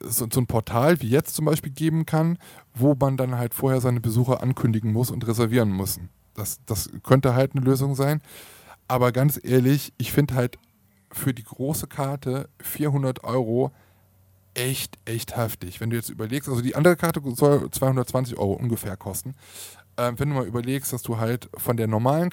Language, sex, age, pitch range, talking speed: German, male, 20-39, 115-145 Hz, 185 wpm